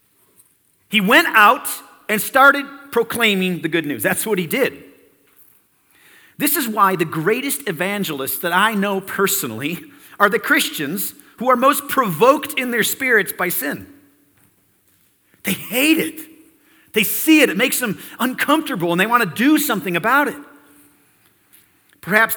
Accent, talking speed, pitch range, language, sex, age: American, 145 wpm, 165-260 Hz, English, male, 40-59